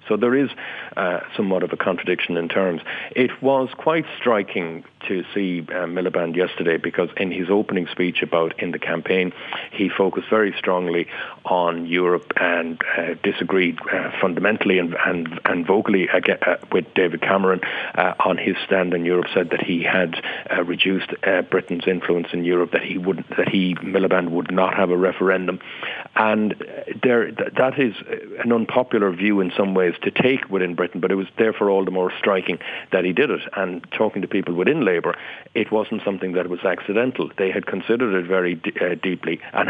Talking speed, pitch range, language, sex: 185 wpm, 90-105 Hz, English, male